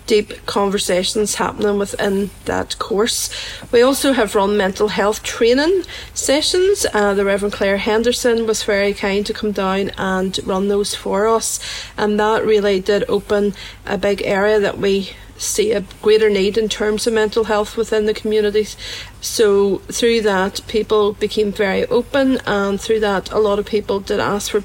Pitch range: 200-225 Hz